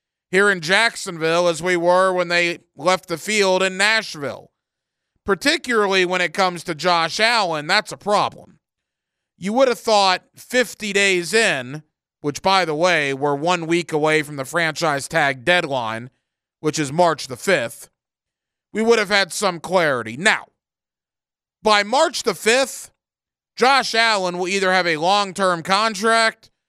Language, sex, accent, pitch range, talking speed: English, male, American, 165-210 Hz, 150 wpm